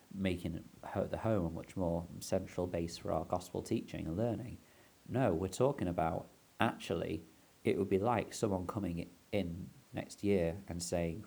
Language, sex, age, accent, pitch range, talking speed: English, male, 40-59, British, 80-95 Hz, 160 wpm